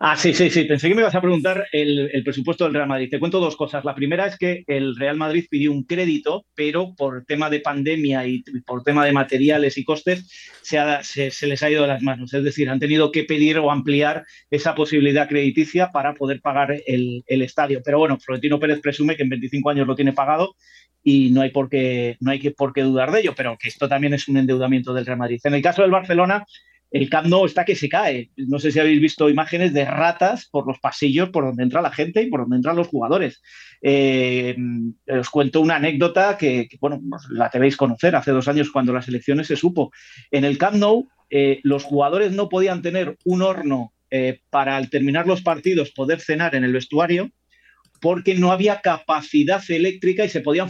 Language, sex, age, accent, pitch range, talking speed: Spanish, male, 30-49, Spanish, 135-170 Hz, 220 wpm